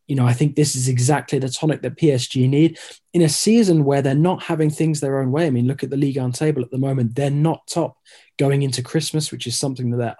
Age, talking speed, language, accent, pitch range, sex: 20-39, 265 wpm, English, British, 125-145 Hz, male